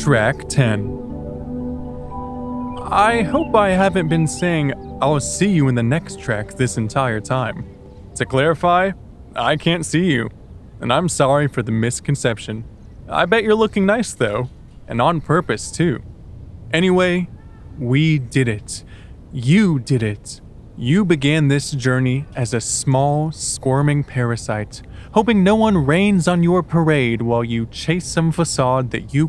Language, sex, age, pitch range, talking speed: English, male, 20-39, 120-170 Hz, 145 wpm